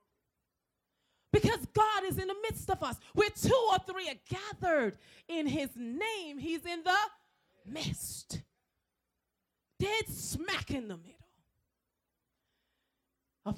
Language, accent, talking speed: English, American, 120 wpm